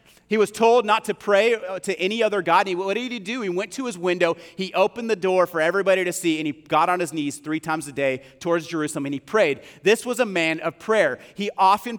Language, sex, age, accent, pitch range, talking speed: English, male, 30-49, American, 170-230 Hz, 260 wpm